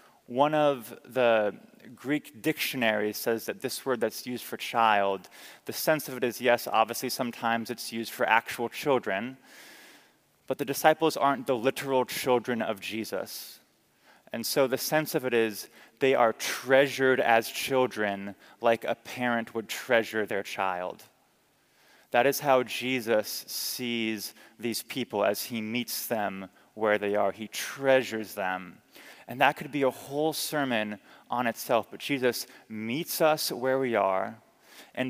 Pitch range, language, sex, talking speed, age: 110-135 Hz, English, male, 150 wpm, 20-39